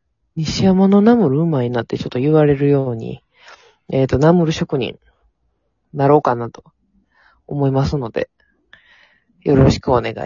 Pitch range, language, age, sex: 125-170 Hz, Japanese, 20-39, female